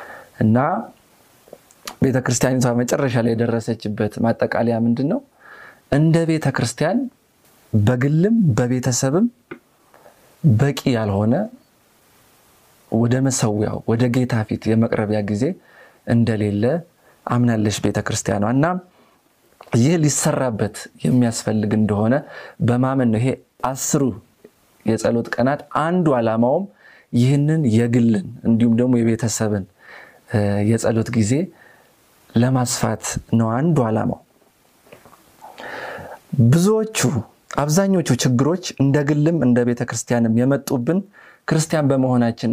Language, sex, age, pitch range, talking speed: Amharic, male, 30-49, 115-140 Hz, 80 wpm